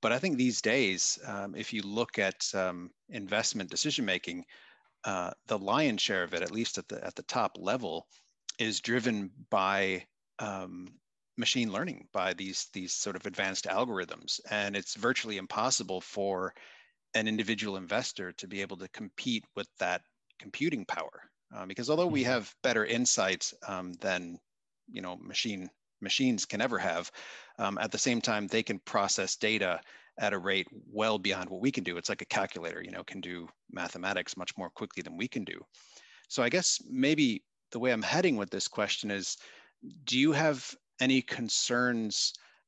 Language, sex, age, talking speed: English, male, 30-49, 175 wpm